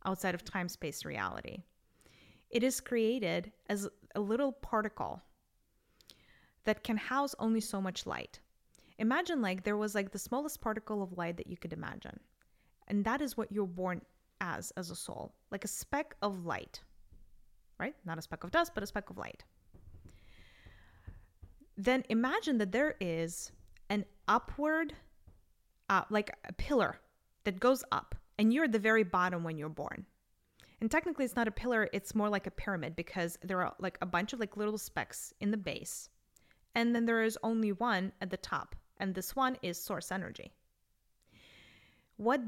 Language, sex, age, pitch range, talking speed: English, female, 10-29, 170-225 Hz, 170 wpm